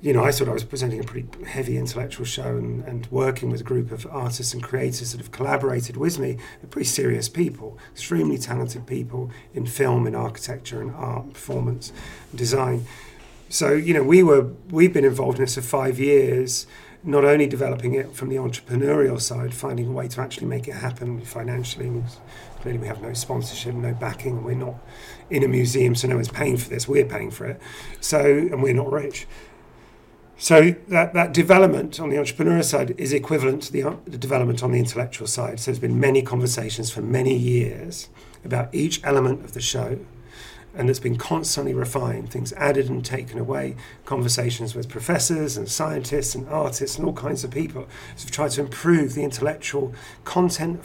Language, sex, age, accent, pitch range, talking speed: English, male, 40-59, British, 120-140 Hz, 190 wpm